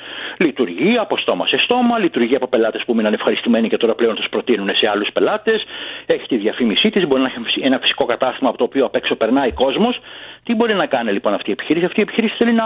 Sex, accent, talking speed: male, native, 235 wpm